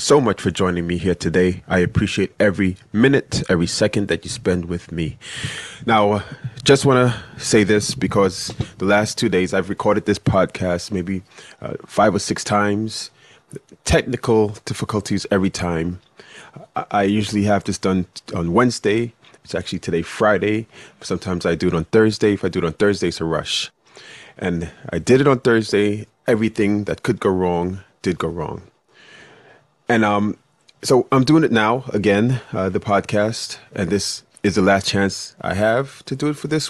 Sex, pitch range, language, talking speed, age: male, 90-115 Hz, English, 180 wpm, 30-49